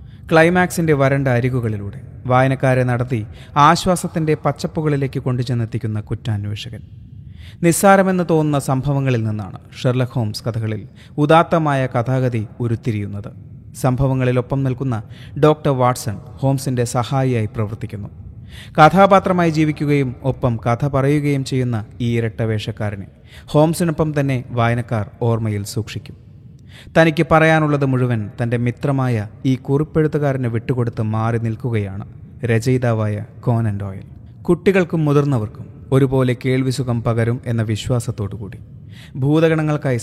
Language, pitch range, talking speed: Malayalam, 110-140 Hz, 85 wpm